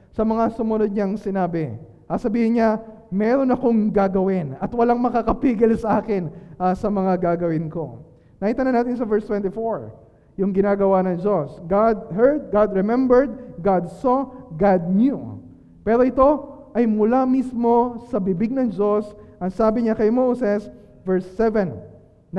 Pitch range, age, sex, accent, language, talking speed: 190-230 Hz, 20-39, male, native, Filipino, 145 wpm